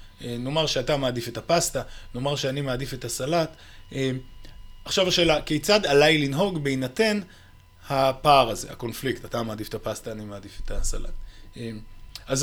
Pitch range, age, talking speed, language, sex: 115-160 Hz, 30-49, 135 wpm, Hebrew, male